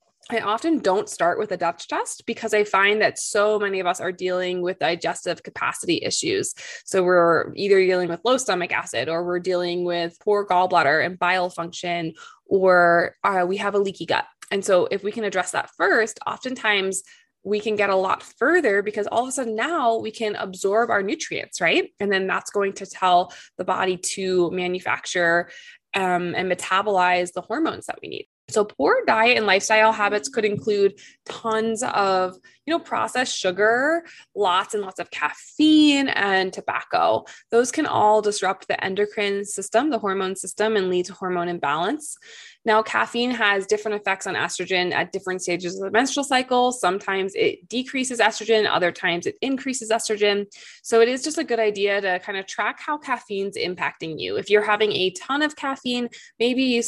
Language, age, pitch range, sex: English, 20-39, 185-235 Hz, female